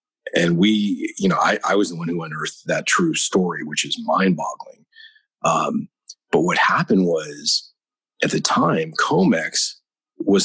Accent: American